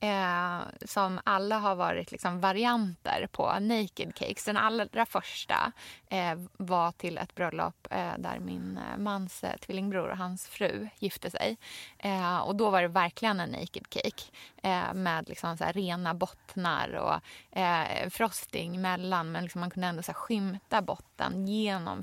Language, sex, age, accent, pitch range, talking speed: Swedish, female, 20-39, native, 180-210 Hz, 155 wpm